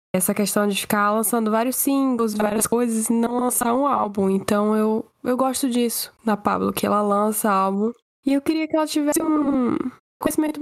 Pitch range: 210-260 Hz